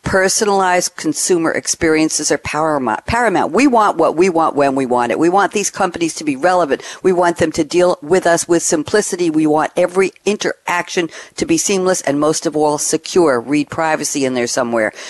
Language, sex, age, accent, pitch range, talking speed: English, female, 60-79, American, 145-195 Hz, 185 wpm